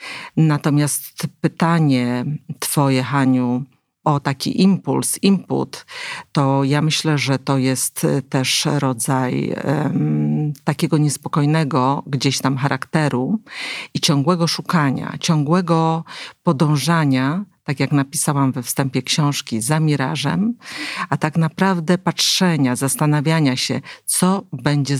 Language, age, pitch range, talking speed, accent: Polish, 50-69, 135-165 Hz, 100 wpm, native